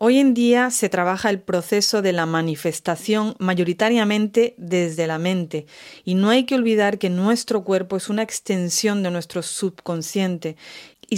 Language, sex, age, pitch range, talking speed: English, female, 40-59, 180-220 Hz, 155 wpm